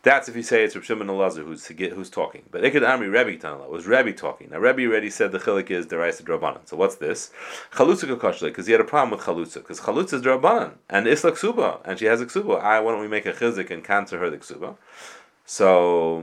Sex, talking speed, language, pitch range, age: male, 255 wpm, English, 90-140 Hz, 30-49